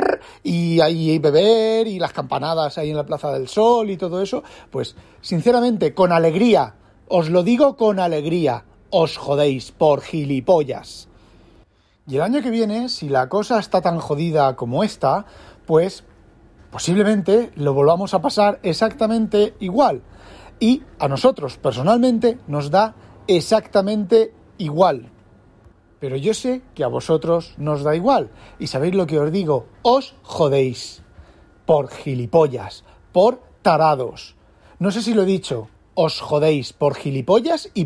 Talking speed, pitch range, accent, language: 145 wpm, 135-220 Hz, Spanish, Spanish